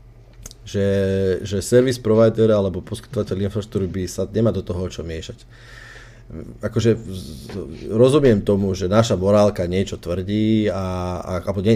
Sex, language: male, Slovak